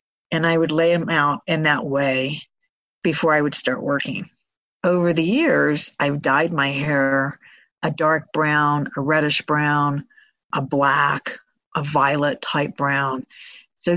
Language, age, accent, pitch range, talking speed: English, 50-69, American, 145-170 Hz, 140 wpm